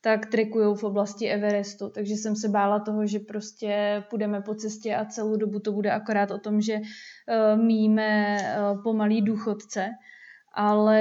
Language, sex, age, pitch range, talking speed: Slovak, female, 20-39, 205-220 Hz, 155 wpm